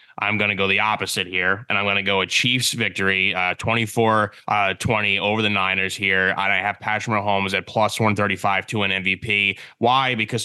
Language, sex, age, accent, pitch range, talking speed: English, male, 20-39, American, 100-120 Hz, 190 wpm